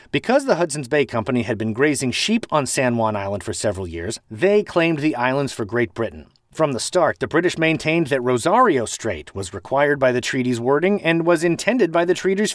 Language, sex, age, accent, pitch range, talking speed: English, male, 30-49, American, 120-190 Hz, 210 wpm